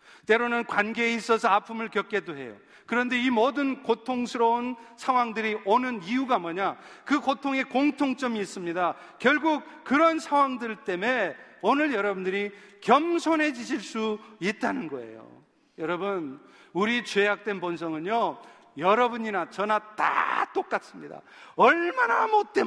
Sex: male